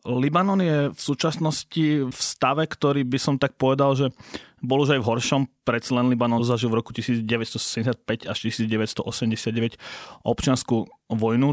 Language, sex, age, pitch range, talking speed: Slovak, male, 30-49, 120-135 Hz, 140 wpm